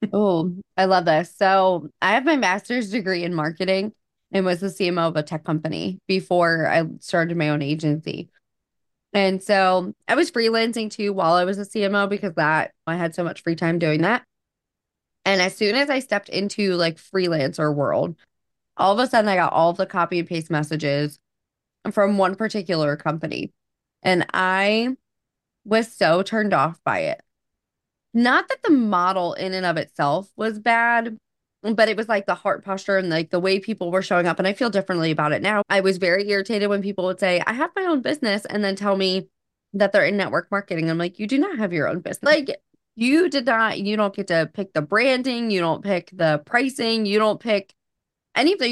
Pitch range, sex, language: 170-220 Hz, female, English